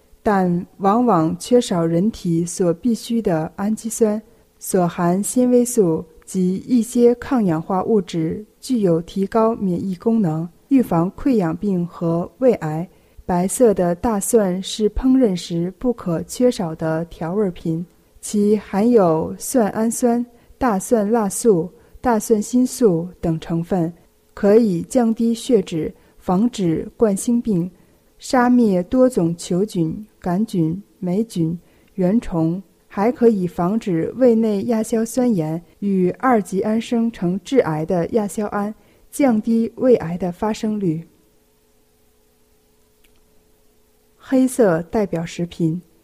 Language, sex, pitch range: Chinese, female, 170-235 Hz